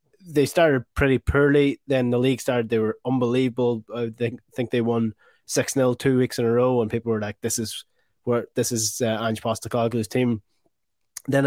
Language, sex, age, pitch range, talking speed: English, male, 20-39, 110-125 Hz, 195 wpm